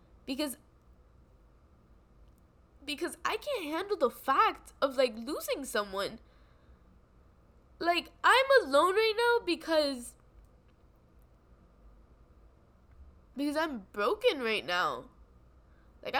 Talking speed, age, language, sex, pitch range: 85 wpm, 10-29, English, female, 185-285 Hz